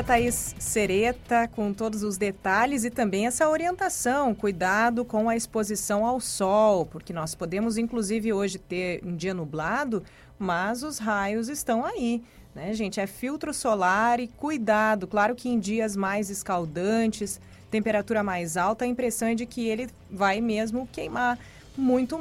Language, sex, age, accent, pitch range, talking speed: Portuguese, female, 30-49, Brazilian, 190-245 Hz, 150 wpm